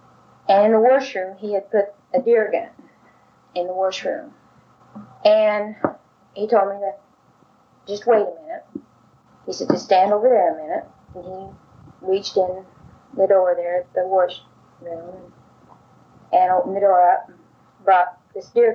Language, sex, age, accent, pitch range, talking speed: English, female, 30-49, American, 180-220 Hz, 155 wpm